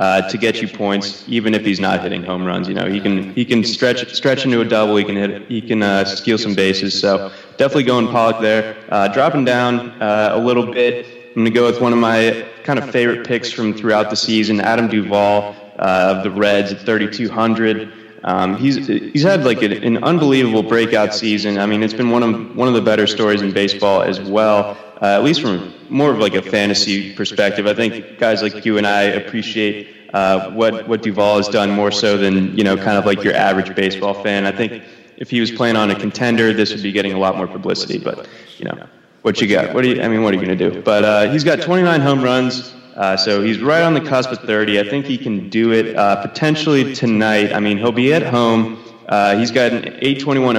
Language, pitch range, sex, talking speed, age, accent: English, 105-120 Hz, male, 235 wpm, 20-39, American